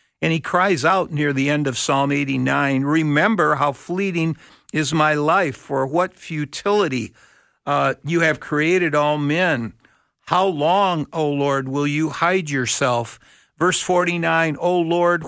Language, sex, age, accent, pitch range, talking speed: English, male, 60-79, American, 140-175 Hz, 145 wpm